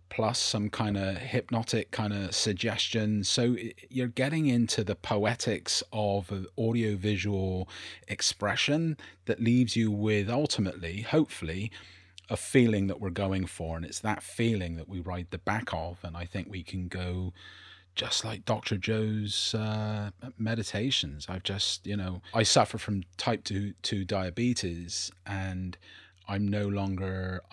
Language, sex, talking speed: English, male, 140 wpm